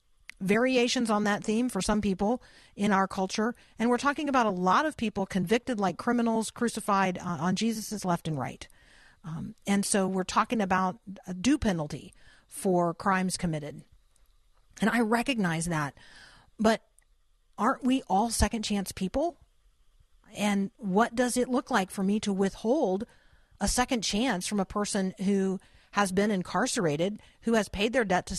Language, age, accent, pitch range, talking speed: English, 50-69, American, 180-225 Hz, 165 wpm